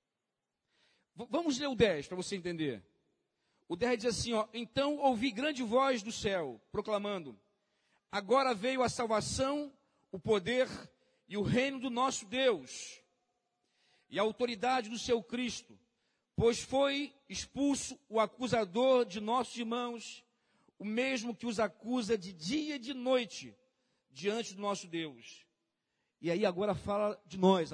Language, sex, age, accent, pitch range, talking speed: Portuguese, male, 50-69, Brazilian, 180-250 Hz, 140 wpm